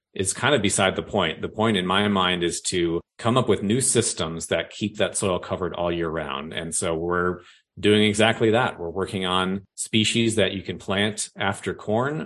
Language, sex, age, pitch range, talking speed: English, male, 30-49, 90-110 Hz, 205 wpm